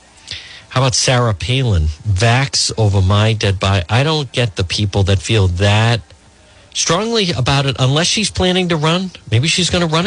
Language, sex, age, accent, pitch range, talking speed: English, male, 50-69, American, 95-130 Hz, 180 wpm